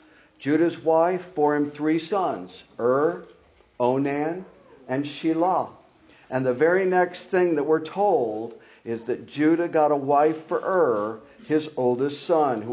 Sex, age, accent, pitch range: male, 50-69, American, 130-175 Hz